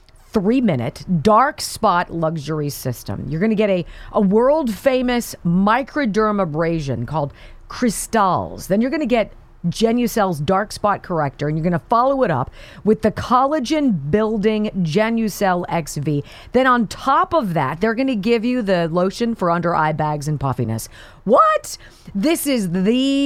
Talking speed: 150 wpm